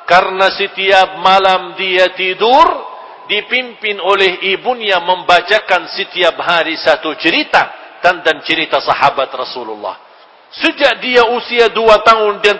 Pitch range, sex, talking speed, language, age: 205-260 Hz, male, 110 wpm, English, 50-69